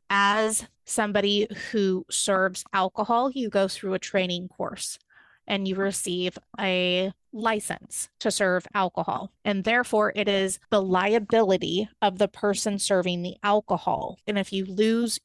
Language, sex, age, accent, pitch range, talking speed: English, female, 30-49, American, 185-215 Hz, 140 wpm